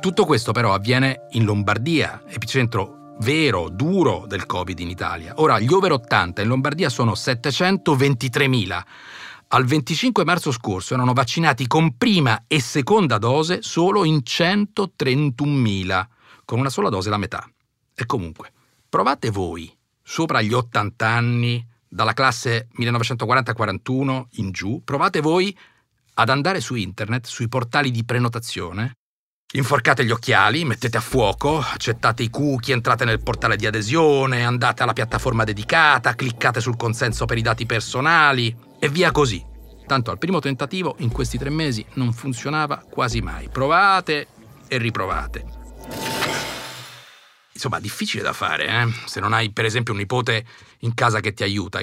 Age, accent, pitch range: 50-69, native, 110-140 Hz